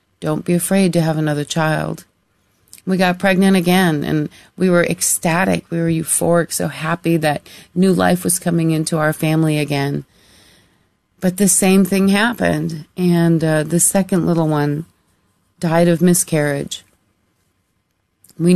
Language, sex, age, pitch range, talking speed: English, female, 40-59, 145-190 Hz, 140 wpm